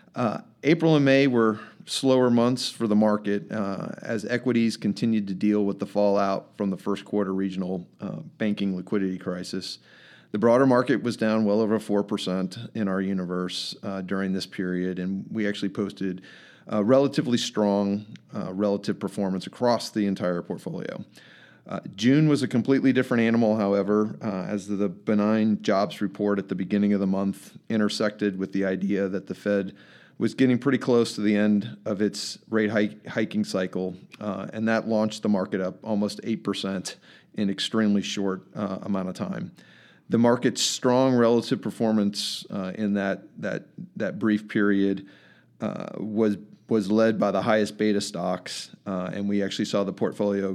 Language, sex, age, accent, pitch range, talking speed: English, male, 40-59, American, 95-110 Hz, 170 wpm